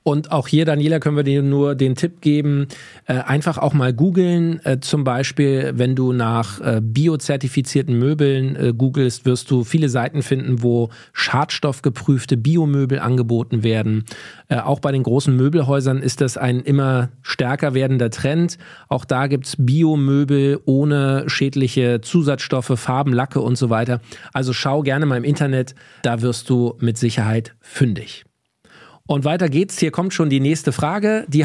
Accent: German